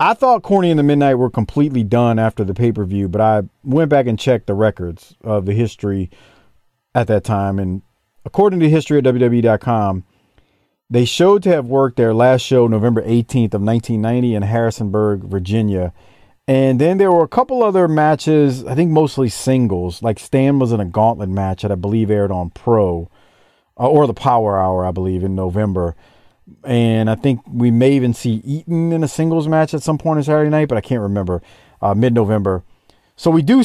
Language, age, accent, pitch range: English, 40-59, American, 105-150 Hz